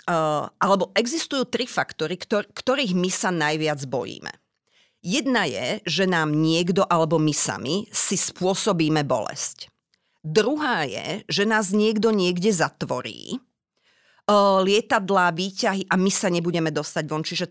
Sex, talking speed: female, 135 wpm